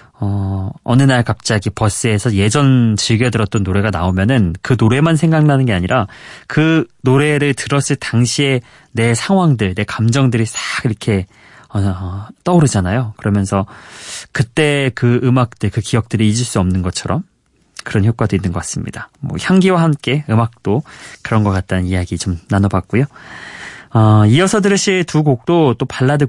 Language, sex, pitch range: Korean, male, 105-150 Hz